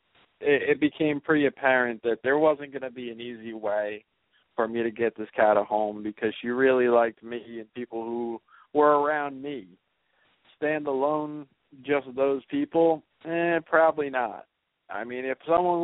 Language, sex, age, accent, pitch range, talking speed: English, male, 40-59, American, 115-150 Hz, 165 wpm